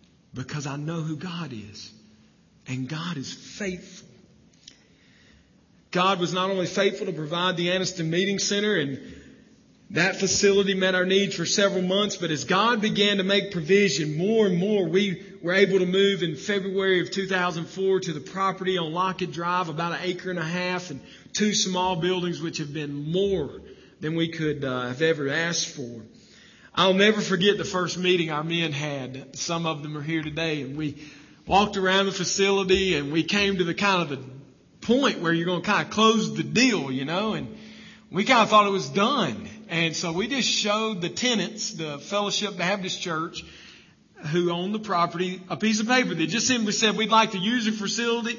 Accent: American